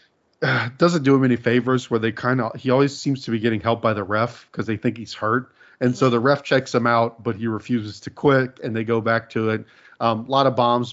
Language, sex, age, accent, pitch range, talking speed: English, male, 40-59, American, 110-130 Hz, 255 wpm